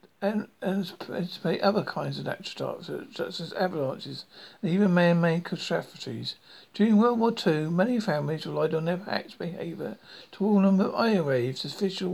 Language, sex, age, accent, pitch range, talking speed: English, male, 60-79, British, 160-200 Hz, 165 wpm